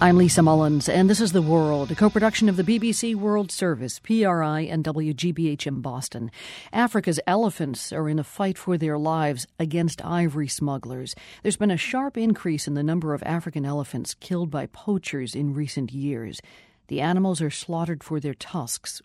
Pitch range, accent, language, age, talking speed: 135-175 Hz, American, English, 50-69, 175 wpm